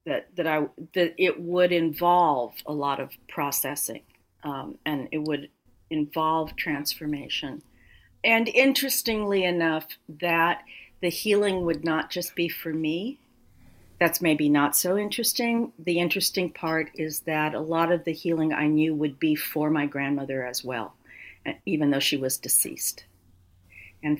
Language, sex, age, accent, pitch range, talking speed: English, female, 50-69, American, 140-175 Hz, 145 wpm